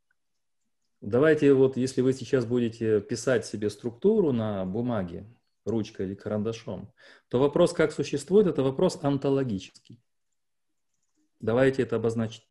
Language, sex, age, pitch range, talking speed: Russian, male, 30-49, 115-155 Hz, 115 wpm